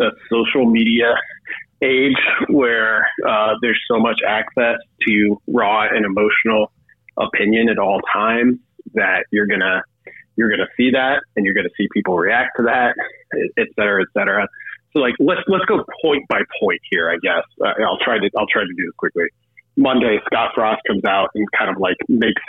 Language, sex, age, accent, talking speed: English, male, 30-49, American, 180 wpm